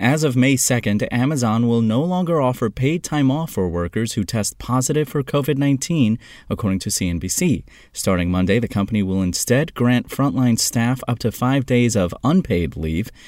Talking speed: 170 wpm